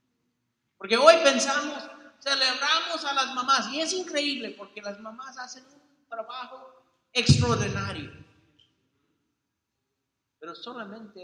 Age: 50-69